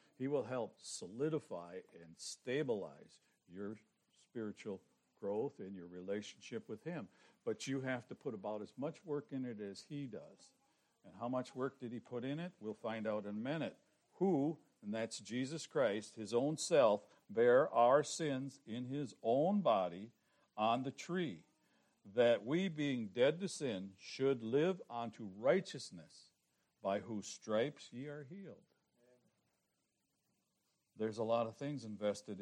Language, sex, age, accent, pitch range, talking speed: English, male, 60-79, American, 110-150 Hz, 155 wpm